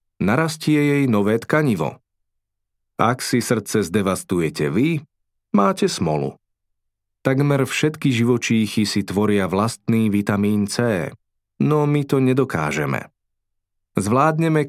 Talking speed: 100 wpm